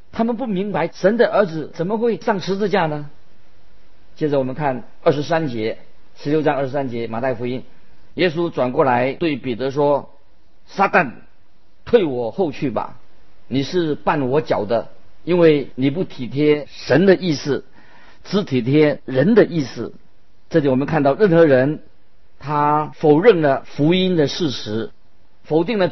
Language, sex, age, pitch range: Chinese, male, 50-69, 130-165 Hz